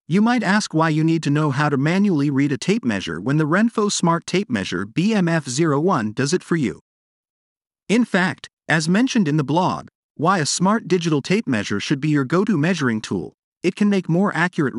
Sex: male